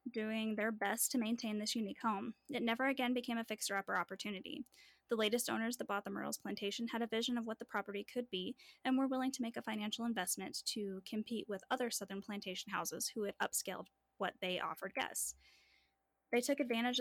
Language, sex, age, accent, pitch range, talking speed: English, female, 10-29, American, 200-245 Hz, 200 wpm